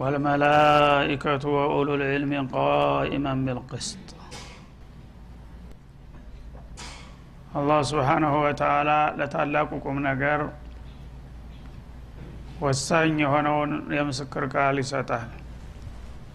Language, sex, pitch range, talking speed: Amharic, male, 125-150 Hz, 55 wpm